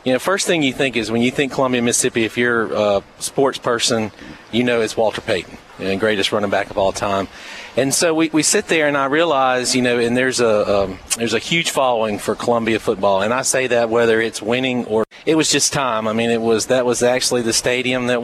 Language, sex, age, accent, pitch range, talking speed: English, male, 40-59, American, 110-130 Hz, 245 wpm